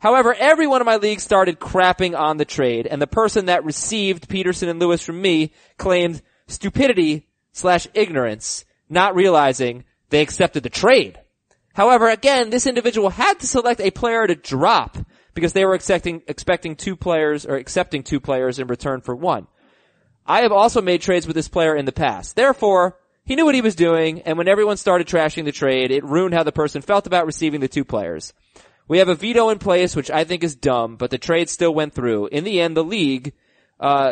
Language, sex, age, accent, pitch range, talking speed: English, male, 20-39, American, 145-195 Hz, 205 wpm